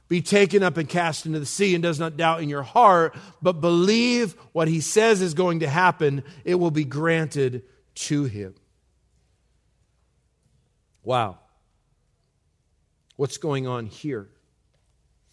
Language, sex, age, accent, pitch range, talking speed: English, male, 40-59, American, 130-165 Hz, 135 wpm